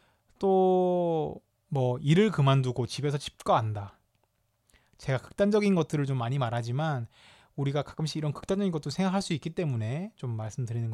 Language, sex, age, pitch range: Korean, male, 20-39, 120-170 Hz